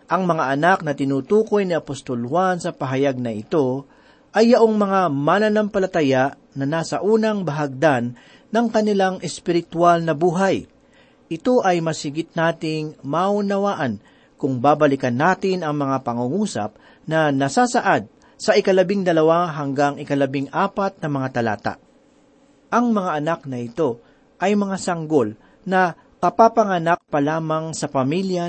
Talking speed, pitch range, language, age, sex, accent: 130 wpm, 140-195 Hz, Filipino, 40-59, male, native